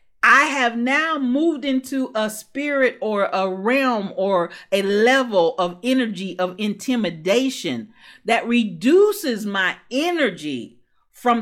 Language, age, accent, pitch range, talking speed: English, 40-59, American, 175-235 Hz, 115 wpm